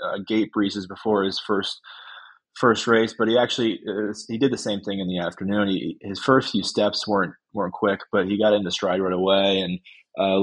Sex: male